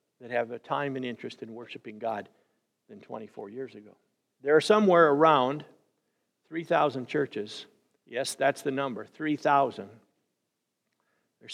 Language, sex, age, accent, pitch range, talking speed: English, male, 50-69, American, 125-160 Hz, 130 wpm